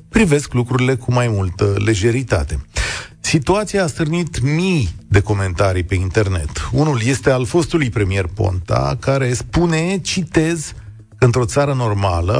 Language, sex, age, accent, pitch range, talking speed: Romanian, male, 40-59, native, 105-155 Hz, 125 wpm